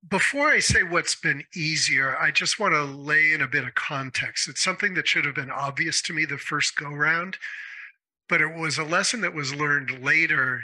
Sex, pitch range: male, 140-175 Hz